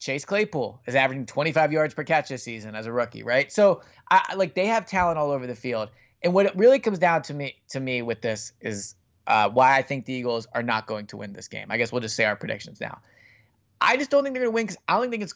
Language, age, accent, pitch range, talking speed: English, 20-39, American, 125-175 Hz, 280 wpm